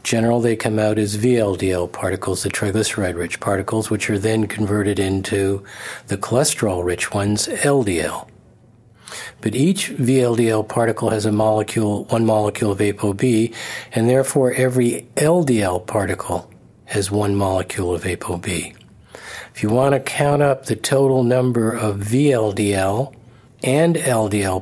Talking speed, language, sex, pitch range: 130 wpm, English, male, 105-135 Hz